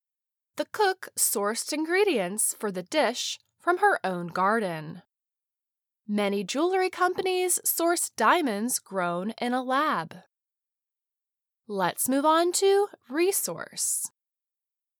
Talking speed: 100 wpm